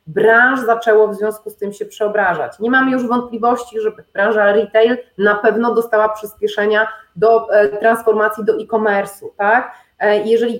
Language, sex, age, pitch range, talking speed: Polish, female, 30-49, 210-250 Hz, 155 wpm